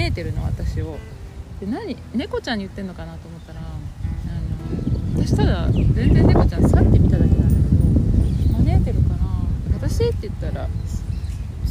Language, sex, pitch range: Japanese, female, 85-100 Hz